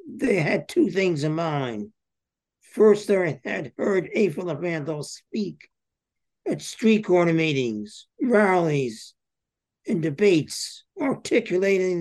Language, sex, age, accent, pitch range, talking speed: English, male, 60-79, American, 155-195 Hz, 110 wpm